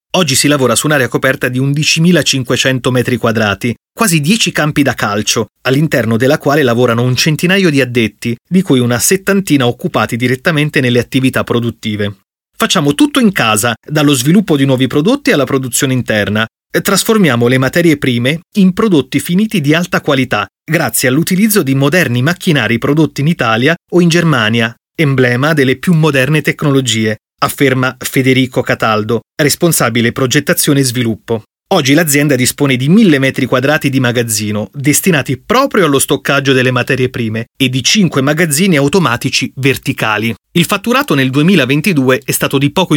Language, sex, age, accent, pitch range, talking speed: Italian, male, 30-49, native, 125-165 Hz, 150 wpm